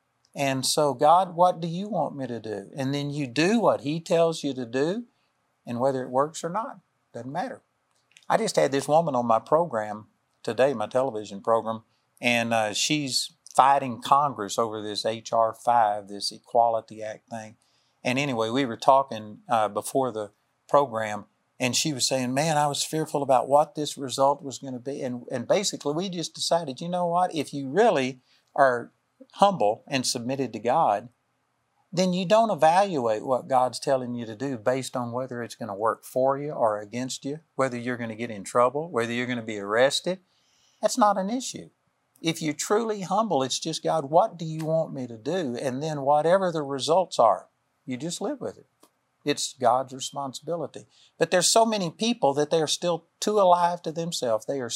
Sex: male